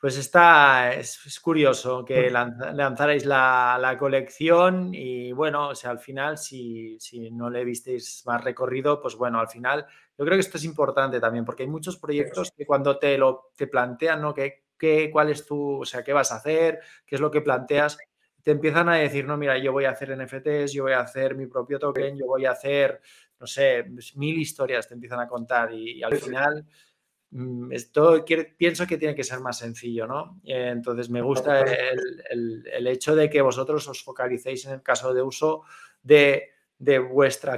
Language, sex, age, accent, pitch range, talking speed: Spanish, male, 20-39, Spanish, 125-155 Hz, 195 wpm